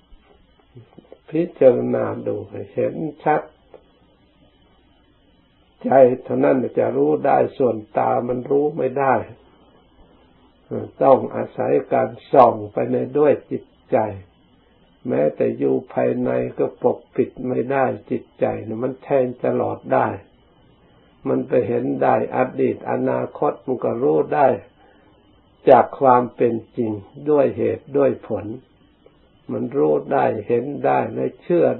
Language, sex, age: Thai, male, 60-79